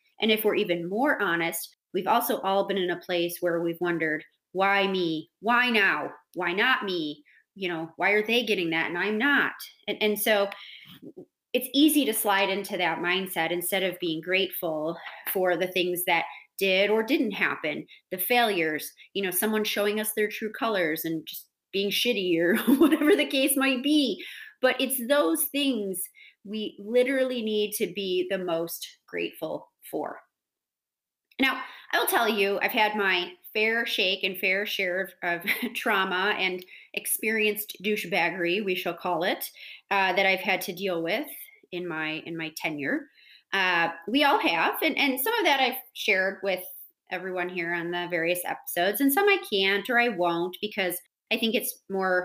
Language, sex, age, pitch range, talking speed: English, female, 30-49, 175-230 Hz, 175 wpm